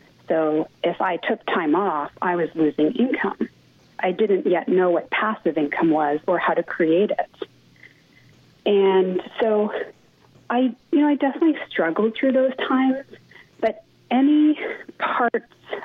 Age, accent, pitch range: 30-49, American, 170-230 Hz